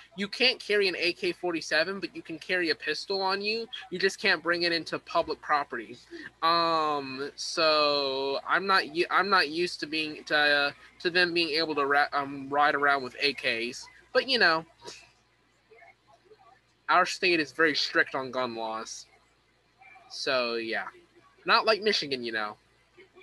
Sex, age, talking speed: male, 20-39, 160 wpm